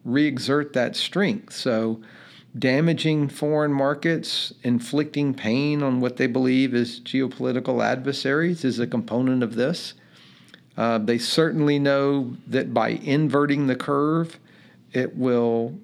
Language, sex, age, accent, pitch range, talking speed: English, male, 50-69, American, 120-145 Hz, 120 wpm